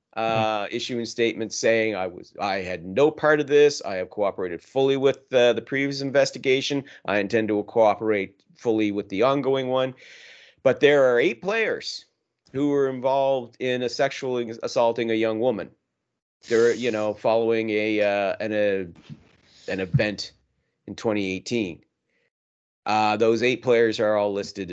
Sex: male